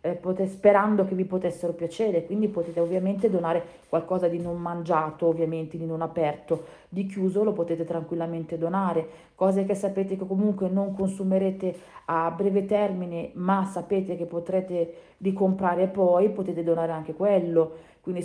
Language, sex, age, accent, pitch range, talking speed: Italian, female, 40-59, native, 165-190 Hz, 150 wpm